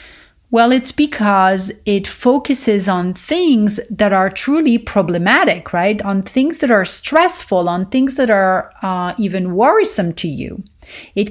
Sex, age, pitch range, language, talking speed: female, 40-59, 190-255 Hz, English, 145 wpm